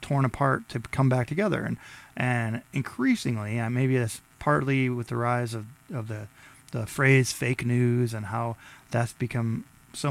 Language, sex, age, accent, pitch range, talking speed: English, male, 20-39, American, 115-135 Hz, 165 wpm